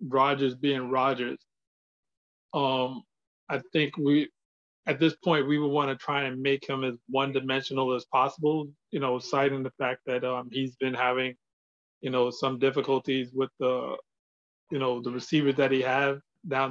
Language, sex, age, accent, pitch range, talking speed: English, male, 20-39, American, 130-150 Hz, 170 wpm